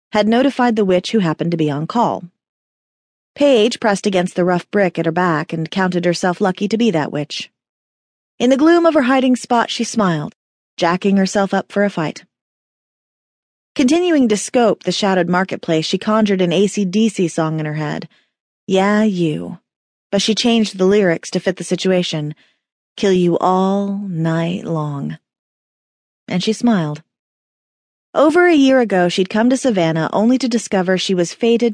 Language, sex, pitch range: English, female, 165-220 Hz